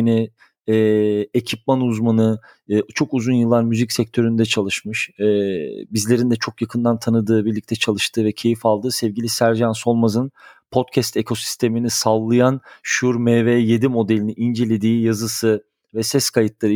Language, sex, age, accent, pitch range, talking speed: Turkish, male, 40-59, native, 115-140 Hz, 120 wpm